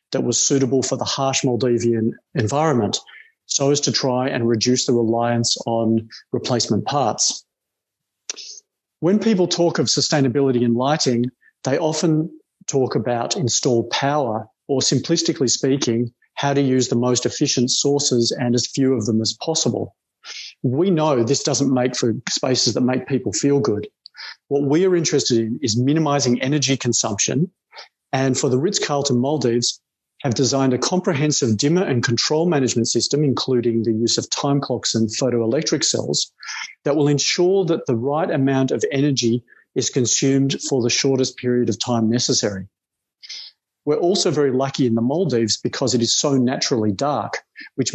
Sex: male